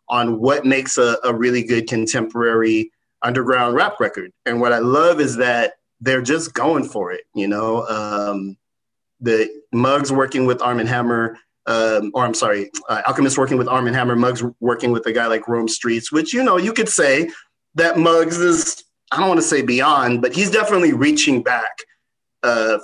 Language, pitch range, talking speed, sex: English, 120-165 Hz, 185 wpm, male